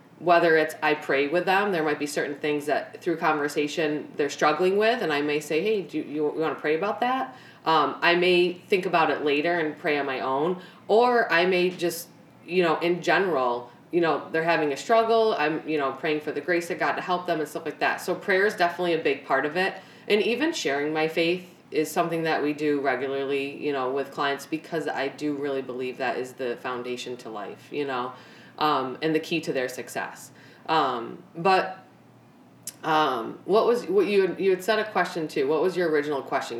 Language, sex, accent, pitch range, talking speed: English, female, American, 150-180 Hz, 220 wpm